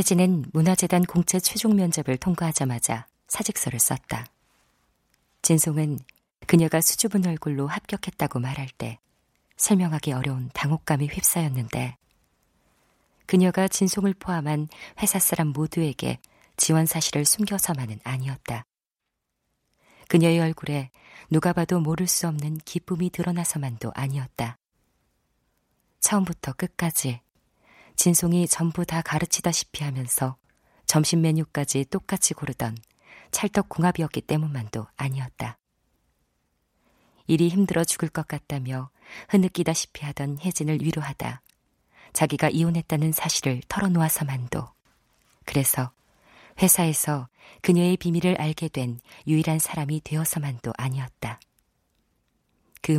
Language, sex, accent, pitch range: Korean, female, native, 135-175 Hz